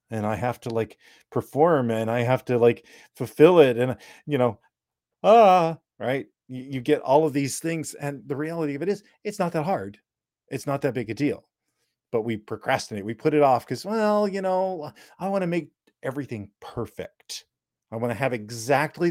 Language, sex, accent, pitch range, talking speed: English, male, American, 110-145 Hz, 200 wpm